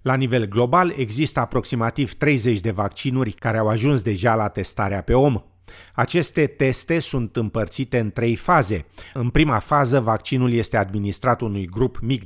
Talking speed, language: 155 wpm, Romanian